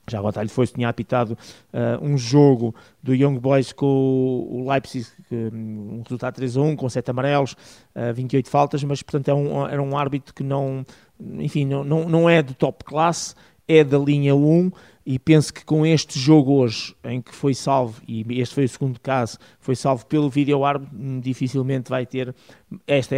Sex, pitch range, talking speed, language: male, 125-145 Hz, 195 wpm, Portuguese